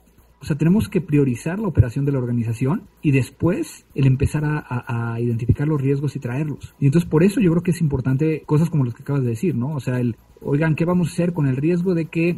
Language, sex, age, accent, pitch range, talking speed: Spanish, male, 40-59, Mexican, 125-155 Hz, 250 wpm